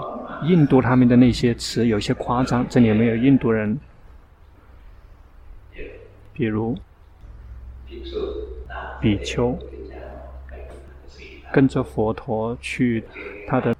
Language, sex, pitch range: Chinese, male, 95-125 Hz